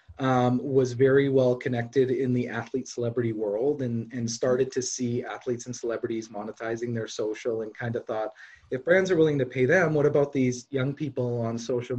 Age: 30-49